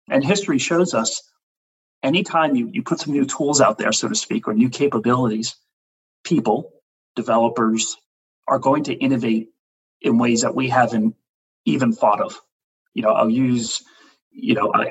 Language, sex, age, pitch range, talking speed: English, male, 40-59, 115-150 Hz, 155 wpm